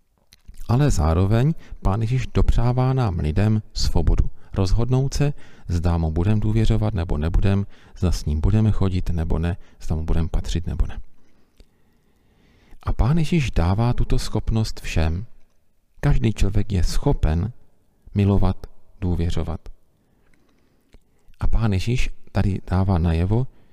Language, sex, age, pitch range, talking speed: Czech, male, 40-59, 85-115 Hz, 120 wpm